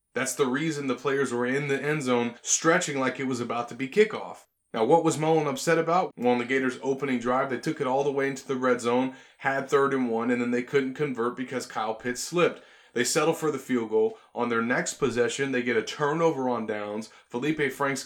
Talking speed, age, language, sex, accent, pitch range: 235 wpm, 30-49, English, male, American, 120-145 Hz